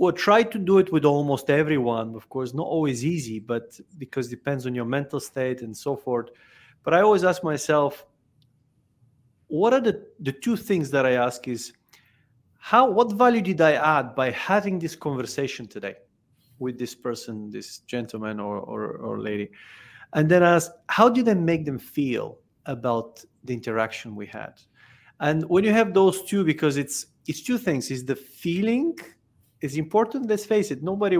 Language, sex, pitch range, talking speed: English, male, 125-165 Hz, 180 wpm